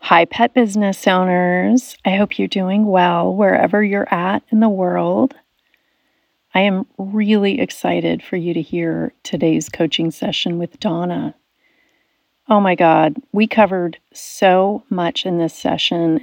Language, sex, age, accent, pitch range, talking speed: English, female, 30-49, American, 180-255 Hz, 140 wpm